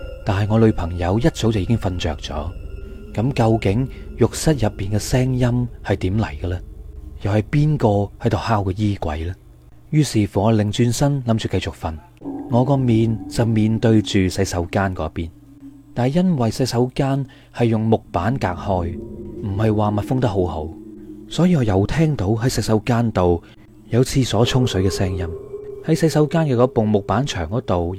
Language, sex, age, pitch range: Chinese, male, 20-39, 95-130 Hz